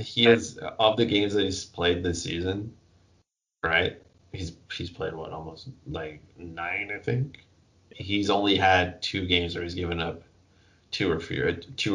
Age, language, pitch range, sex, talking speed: 20-39, English, 85-100 Hz, male, 150 wpm